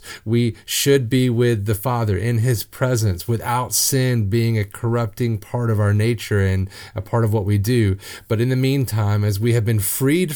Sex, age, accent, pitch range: male, 30-49, American, 100-120 Hz